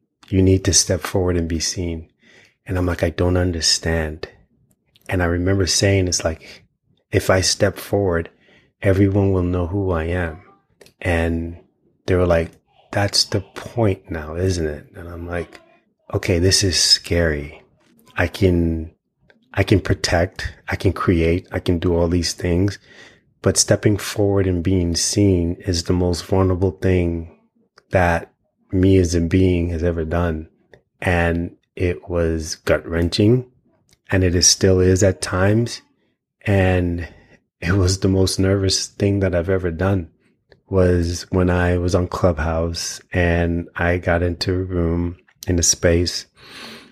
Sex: male